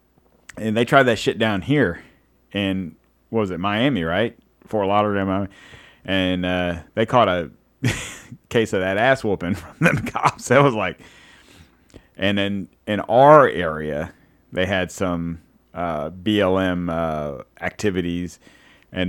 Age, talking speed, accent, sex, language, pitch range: 30-49, 140 wpm, American, male, English, 85-100 Hz